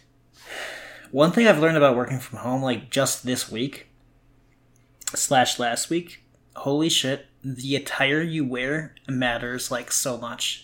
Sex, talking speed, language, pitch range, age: male, 140 wpm, English, 120-140 Hz, 20-39